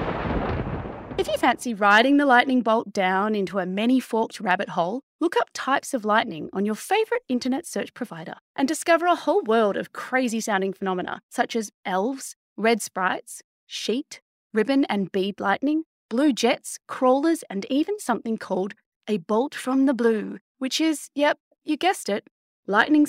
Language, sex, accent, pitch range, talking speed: English, female, Australian, 200-295 Hz, 160 wpm